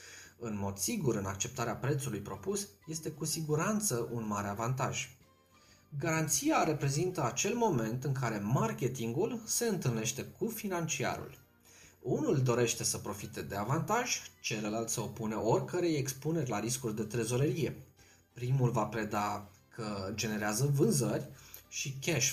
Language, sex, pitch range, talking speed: Romanian, male, 110-150 Hz, 125 wpm